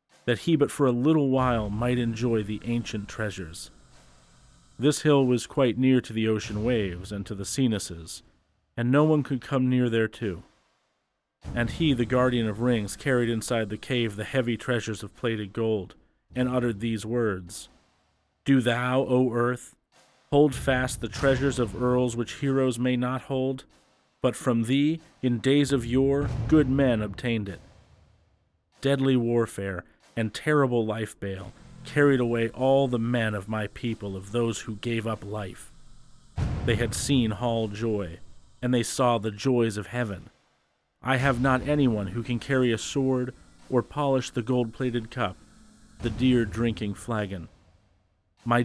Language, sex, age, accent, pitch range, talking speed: English, male, 40-59, American, 105-130 Hz, 160 wpm